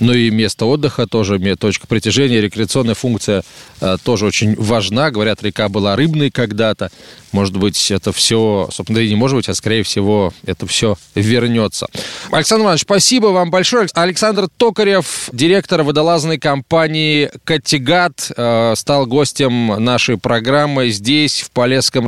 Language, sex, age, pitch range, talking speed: Russian, male, 20-39, 115-170 Hz, 135 wpm